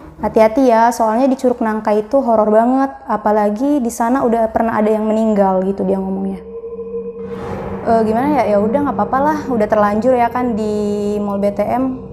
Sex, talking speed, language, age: female, 170 wpm, Indonesian, 20-39